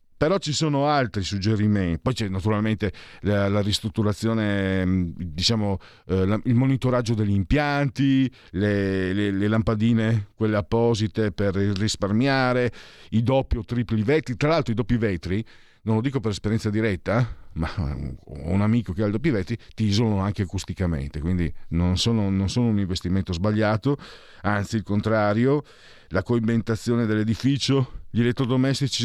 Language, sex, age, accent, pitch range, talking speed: Italian, male, 50-69, native, 95-125 Hz, 145 wpm